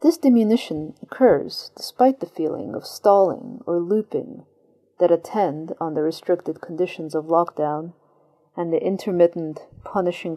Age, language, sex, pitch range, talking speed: 40-59, English, female, 160-200 Hz, 125 wpm